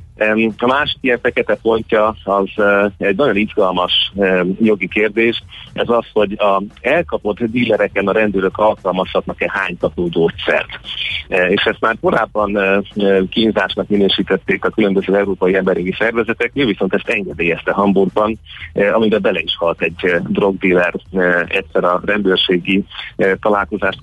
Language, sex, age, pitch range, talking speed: Hungarian, male, 30-49, 95-110 Hz, 120 wpm